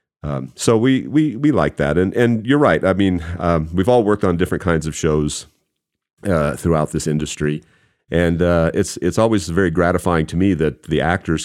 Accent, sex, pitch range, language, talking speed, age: American, male, 75-90 Hz, English, 200 wpm, 40-59